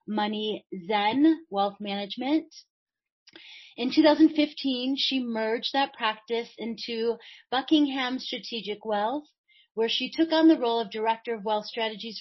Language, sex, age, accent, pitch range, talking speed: English, female, 30-49, American, 220-275 Hz, 125 wpm